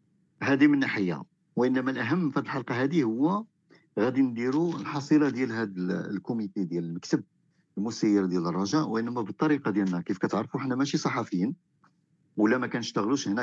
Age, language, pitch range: 50-69, Arabic, 95-150 Hz